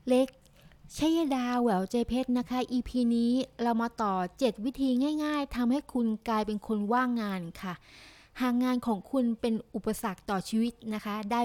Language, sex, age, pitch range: Thai, female, 20-39, 215-260 Hz